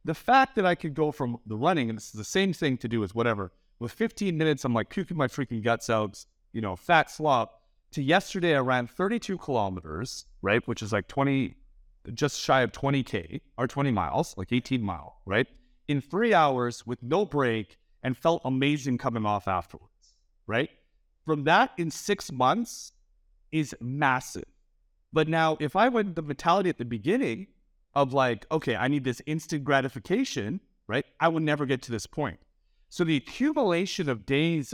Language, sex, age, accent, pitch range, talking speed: English, male, 30-49, American, 120-160 Hz, 185 wpm